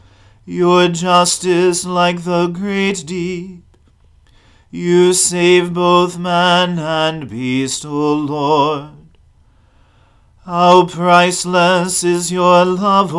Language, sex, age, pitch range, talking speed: English, male, 40-59, 150-180 Hz, 85 wpm